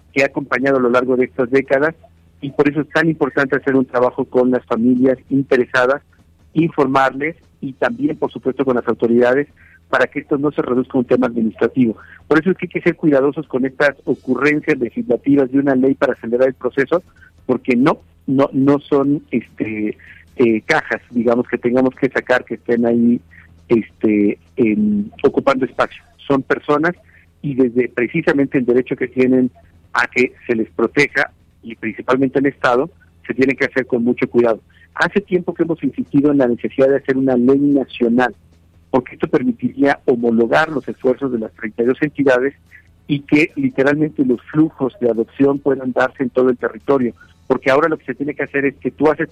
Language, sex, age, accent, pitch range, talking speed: Spanish, male, 50-69, Mexican, 120-145 Hz, 185 wpm